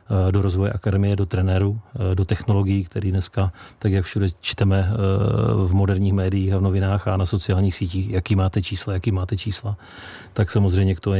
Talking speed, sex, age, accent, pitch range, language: 175 wpm, male, 40-59, native, 95-105 Hz, Czech